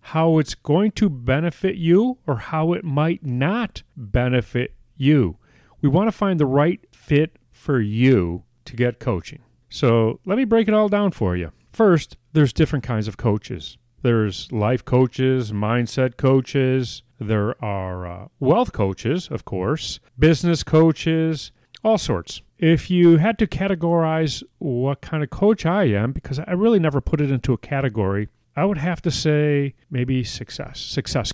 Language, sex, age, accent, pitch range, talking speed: English, male, 40-59, American, 115-160 Hz, 160 wpm